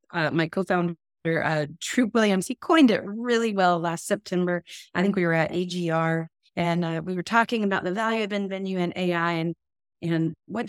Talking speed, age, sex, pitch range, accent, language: 190 wpm, 30-49, female, 165-195 Hz, American, English